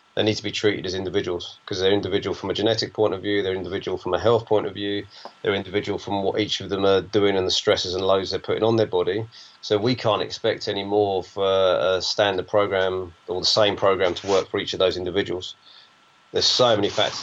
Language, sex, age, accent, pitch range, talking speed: English, male, 30-49, British, 95-105 Hz, 235 wpm